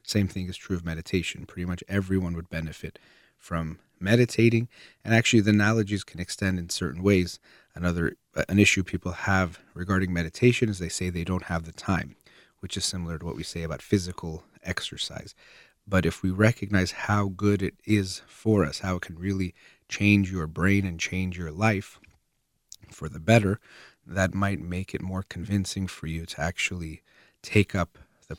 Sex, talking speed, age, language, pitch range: male, 180 wpm, 30-49, English, 85-105 Hz